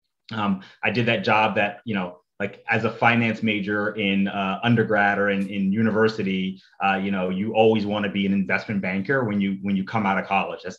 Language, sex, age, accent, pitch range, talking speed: English, male, 30-49, American, 100-120 Hz, 220 wpm